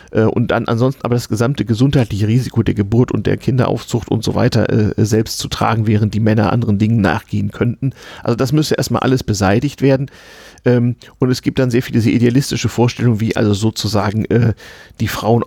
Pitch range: 110-130 Hz